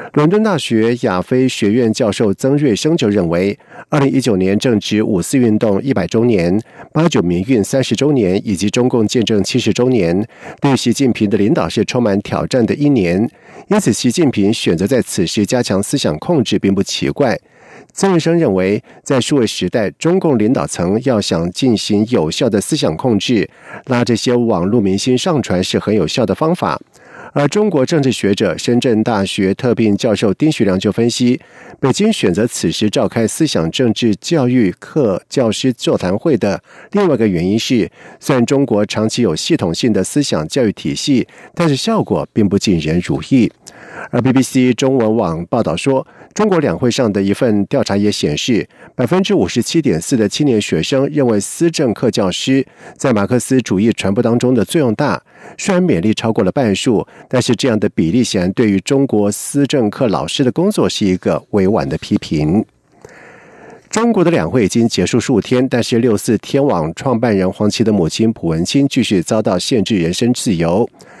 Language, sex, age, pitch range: German, male, 50-69, 105-140 Hz